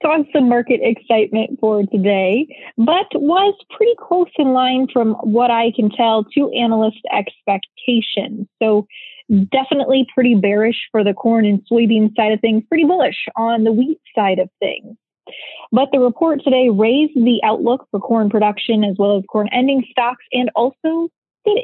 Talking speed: 165 wpm